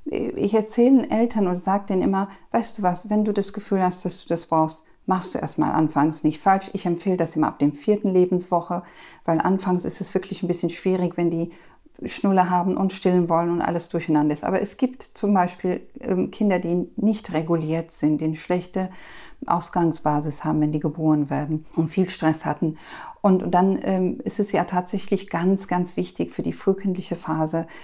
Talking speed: 190 wpm